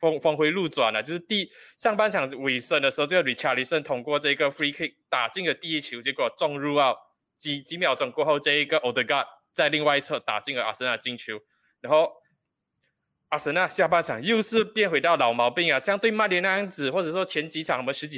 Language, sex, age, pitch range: Chinese, male, 20-39, 125-160 Hz